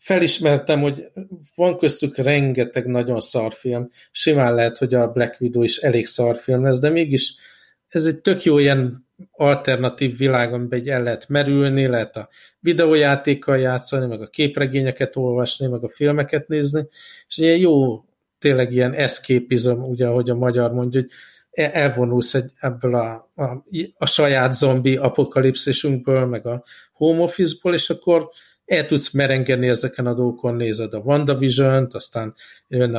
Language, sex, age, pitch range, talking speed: Hungarian, male, 50-69, 125-145 Hz, 145 wpm